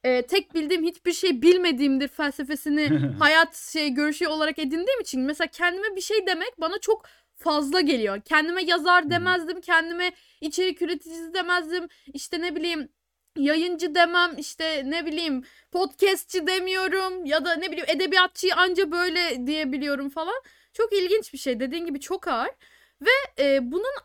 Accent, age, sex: native, 10-29, female